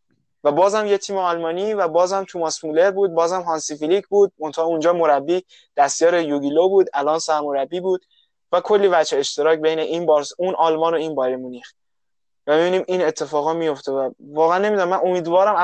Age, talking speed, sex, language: 20-39, 180 wpm, male, Persian